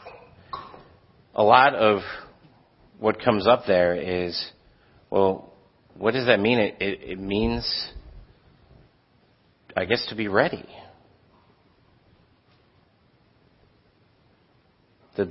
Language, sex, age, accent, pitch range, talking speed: English, male, 40-59, American, 90-115 Hz, 85 wpm